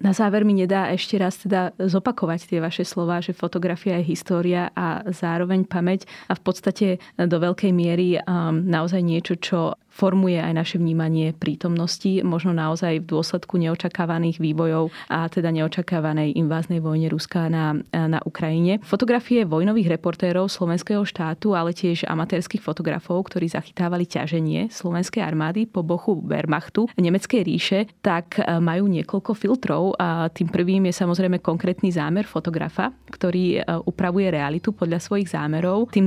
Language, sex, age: Slovak, female, 20-39